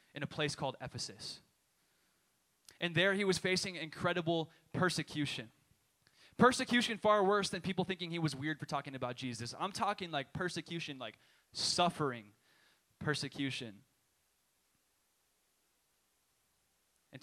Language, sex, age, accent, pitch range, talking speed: English, male, 20-39, American, 130-170 Hz, 115 wpm